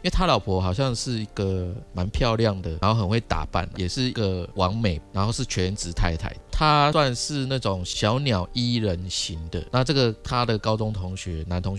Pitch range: 90-115 Hz